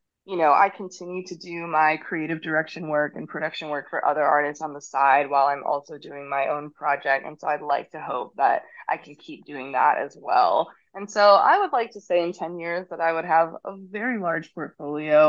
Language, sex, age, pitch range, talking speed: English, female, 20-39, 145-180 Hz, 230 wpm